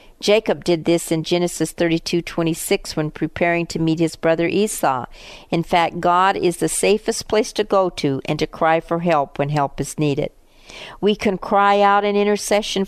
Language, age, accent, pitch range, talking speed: English, 50-69, American, 155-190 Hz, 190 wpm